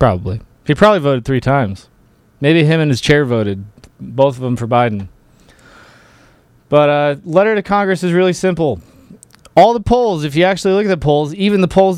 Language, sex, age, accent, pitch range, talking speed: English, male, 30-49, American, 125-165 Hz, 195 wpm